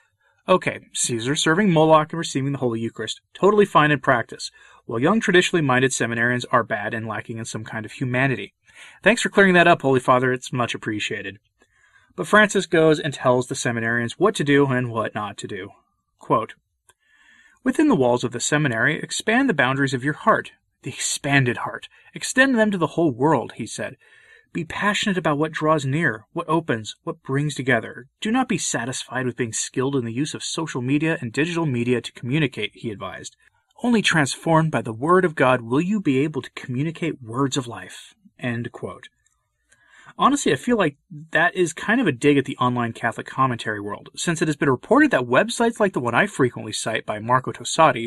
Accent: American